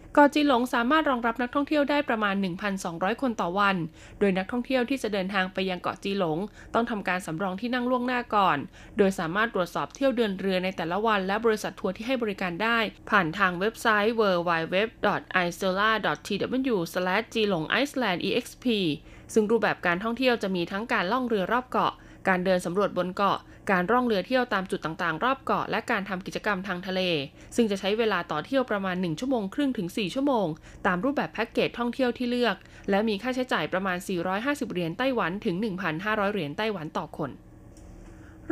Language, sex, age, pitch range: Thai, female, 20-39, 185-235 Hz